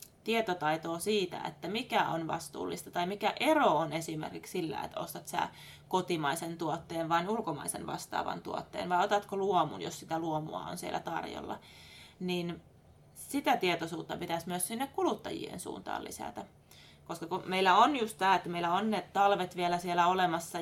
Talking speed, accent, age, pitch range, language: 155 wpm, native, 20-39, 170-210 Hz, Finnish